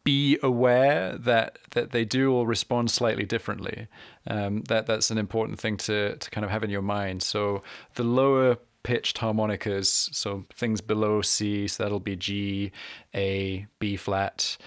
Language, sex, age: English, male, 20-39